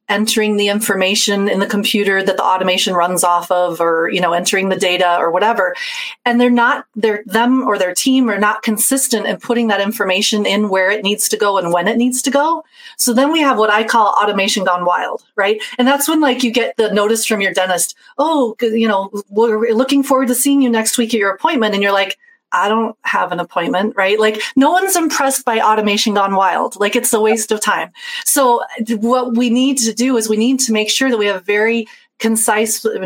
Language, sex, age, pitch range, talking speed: English, female, 30-49, 200-250 Hz, 225 wpm